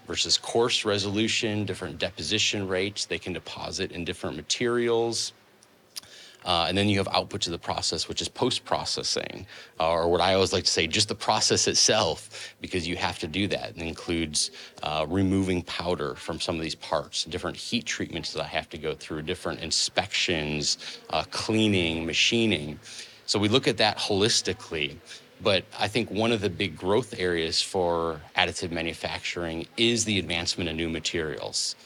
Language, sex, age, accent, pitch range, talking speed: Danish, male, 30-49, American, 85-100 Hz, 170 wpm